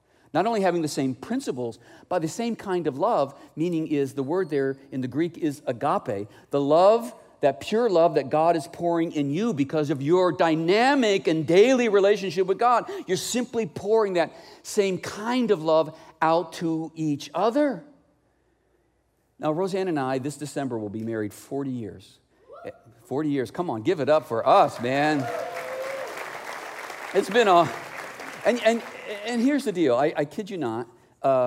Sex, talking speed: male, 170 wpm